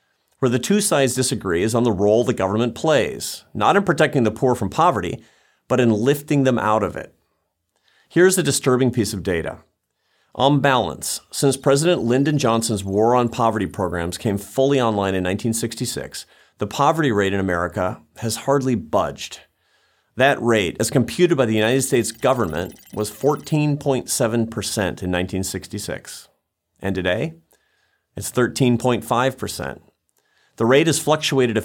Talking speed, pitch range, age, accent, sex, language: 145 wpm, 105-140 Hz, 40-59, American, male, English